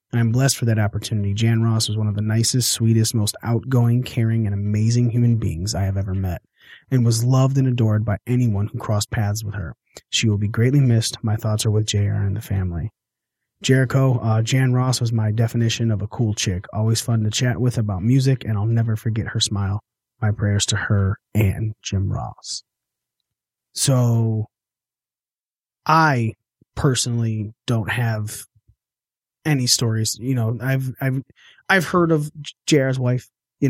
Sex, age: male, 30-49